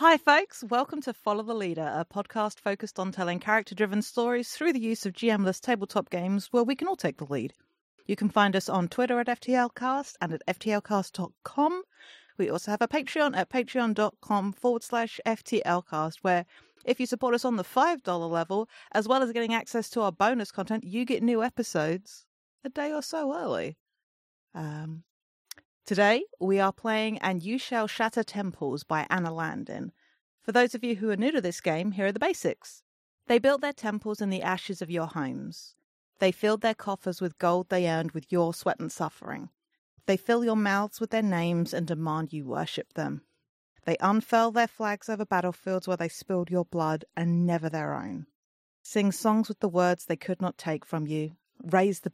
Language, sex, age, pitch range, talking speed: English, female, 40-59, 175-235 Hz, 190 wpm